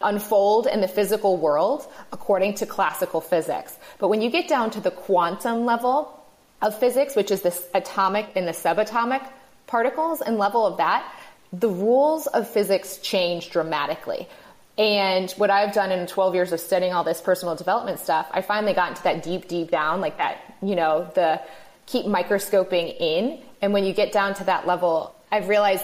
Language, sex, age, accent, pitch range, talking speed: English, female, 30-49, American, 180-215 Hz, 180 wpm